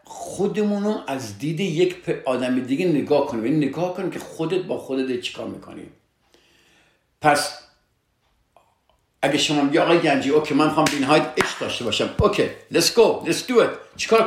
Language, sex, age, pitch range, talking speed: Persian, male, 60-79, 120-170 Hz, 140 wpm